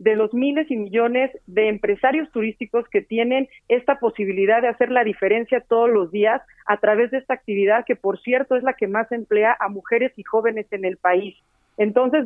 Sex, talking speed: female, 195 wpm